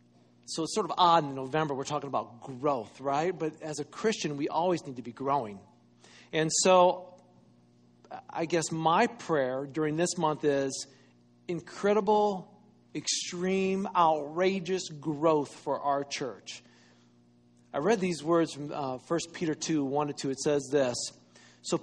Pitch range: 135-185 Hz